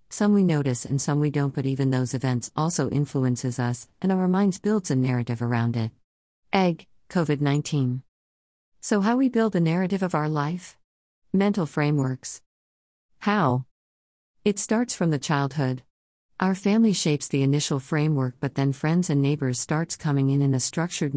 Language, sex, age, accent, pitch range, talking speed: English, female, 50-69, American, 125-165 Hz, 165 wpm